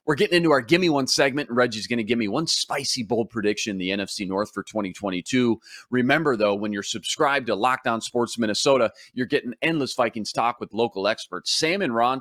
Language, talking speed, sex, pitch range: English, 215 wpm, male, 100-140 Hz